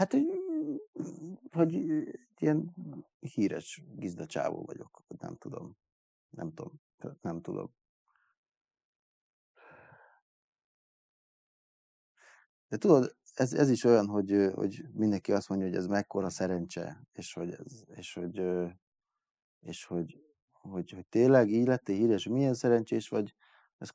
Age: 30-49